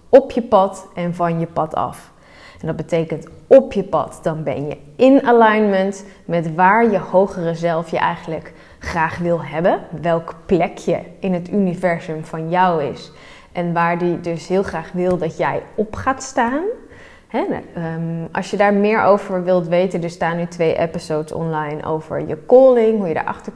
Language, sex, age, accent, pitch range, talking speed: Dutch, female, 20-39, Dutch, 165-200 Hz, 180 wpm